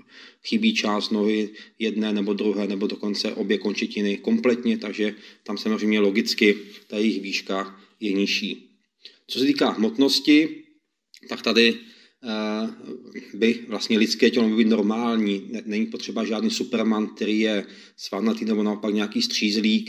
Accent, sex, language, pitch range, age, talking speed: native, male, Czech, 100-120 Hz, 30-49, 135 wpm